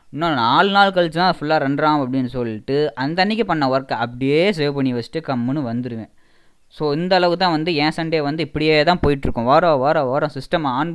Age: 20-39